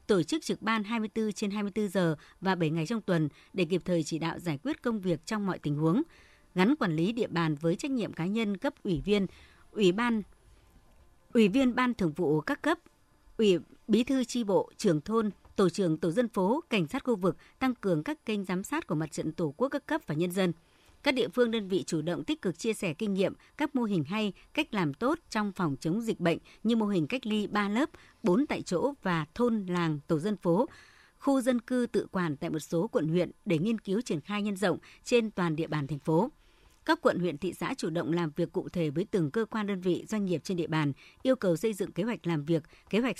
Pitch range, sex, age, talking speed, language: 170-230 Hz, male, 60-79, 245 wpm, Vietnamese